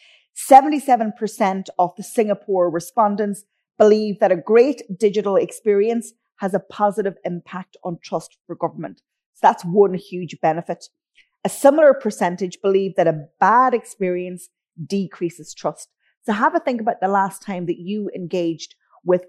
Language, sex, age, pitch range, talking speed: English, female, 30-49, 175-215 Hz, 140 wpm